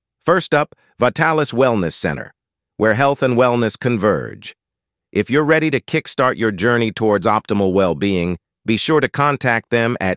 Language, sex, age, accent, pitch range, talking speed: English, male, 50-69, American, 105-130 Hz, 155 wpm